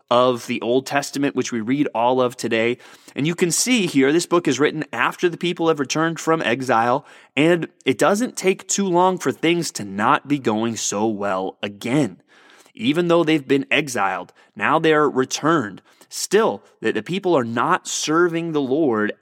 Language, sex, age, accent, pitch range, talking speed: English, male, 30-49, American, 120-170 Hz, 180 wpm